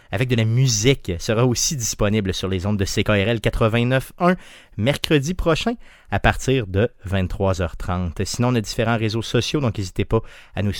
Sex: male